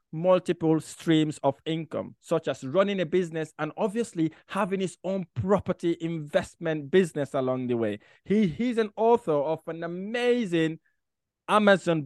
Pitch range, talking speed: 150-195 Hz, 140 wpm